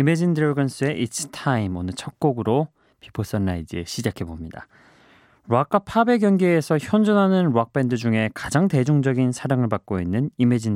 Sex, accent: male, native